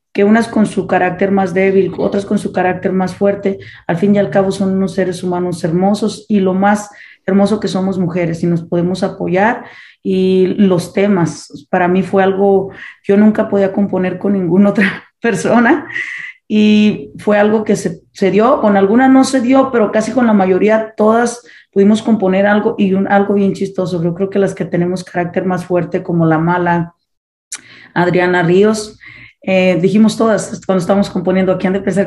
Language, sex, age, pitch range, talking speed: Spanish, female, 30-49, 180-210 Hz, 185 wpm